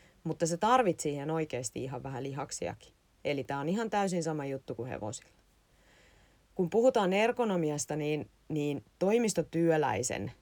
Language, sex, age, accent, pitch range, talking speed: Finnish, female, 30-49, native, 130-175 Hz, 130 wpm